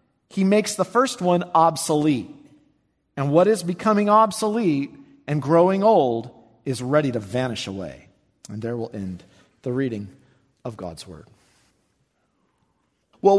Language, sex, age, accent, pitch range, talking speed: English, male, 40-59, American, 140-205 Hz, 130 wpm